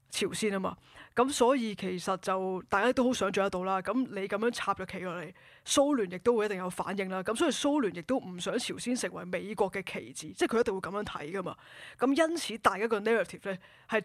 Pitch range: 195-235 Hz